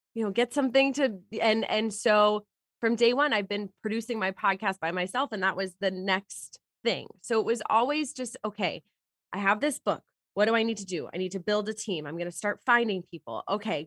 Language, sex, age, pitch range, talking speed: English, female, 20-39, 185-230 Hz, 225 wpm